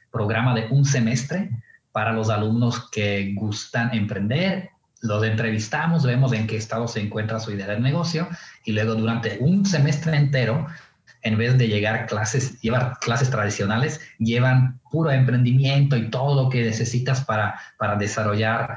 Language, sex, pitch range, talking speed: English, male, 105-130 Hz, 155 wpm